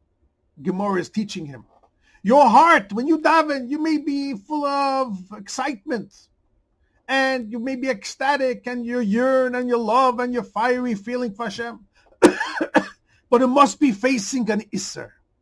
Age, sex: 50-69, male